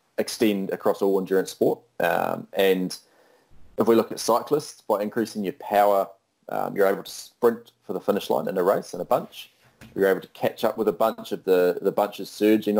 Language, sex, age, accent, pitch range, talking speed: English, male, 30-49, Australian, 95-115 Hz, 210 wpm